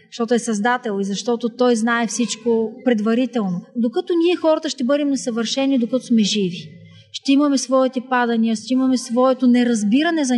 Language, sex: Bulgarian, female